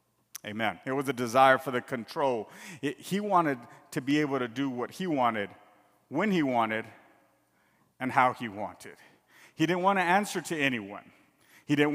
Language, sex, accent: English, male, American